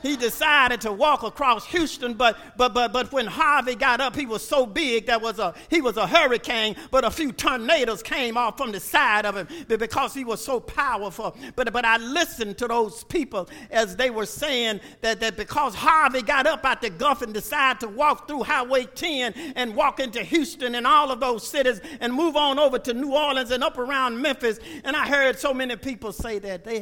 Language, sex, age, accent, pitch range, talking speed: English, male, 50-69, American, 210-280 Hz, 215 wpm